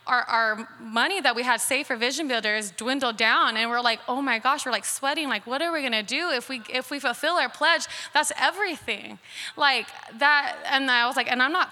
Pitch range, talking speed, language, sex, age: 230-275 Hz, 230 wpm, English, female, 20-39